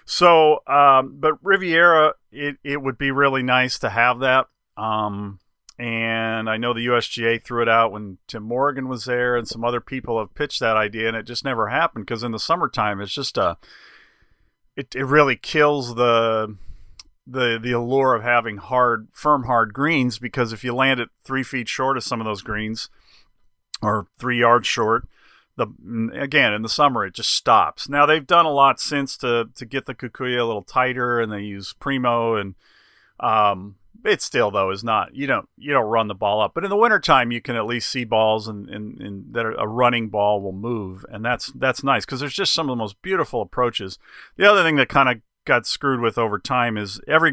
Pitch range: 110-135 Hz